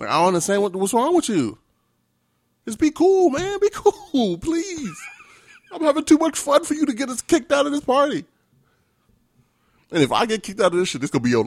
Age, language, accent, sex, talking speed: 30-49, English, American, male, 230 wpm